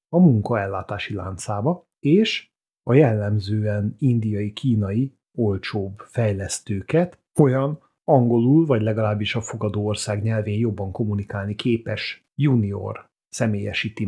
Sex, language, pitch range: male, Hungarian, 105-145 Hz